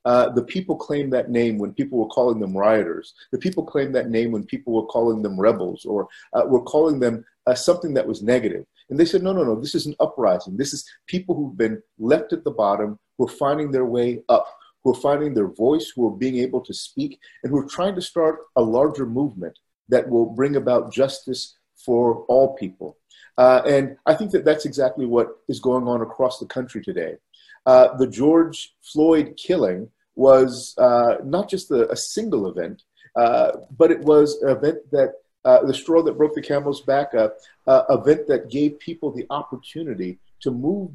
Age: 50-69